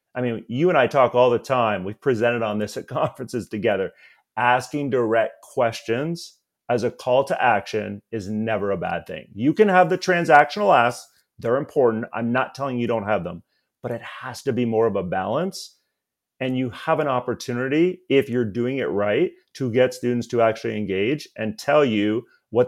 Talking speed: 195 wpm